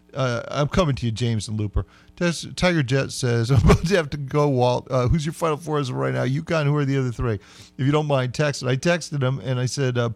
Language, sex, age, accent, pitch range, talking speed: English, male, 40-59, American, 115-155 Hz, 270 wpm